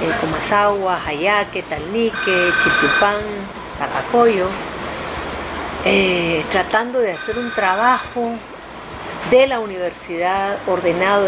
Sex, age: female, 40-59